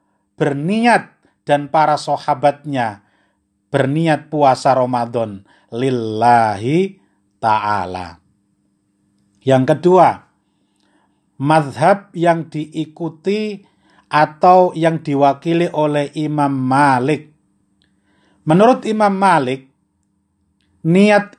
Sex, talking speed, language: male, 65 wpm, Indonesian